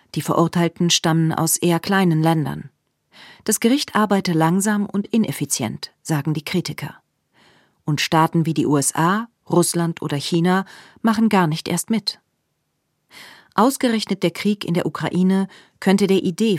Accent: German